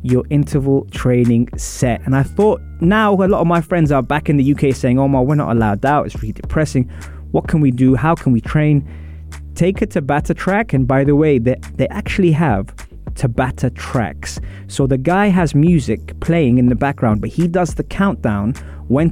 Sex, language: male, English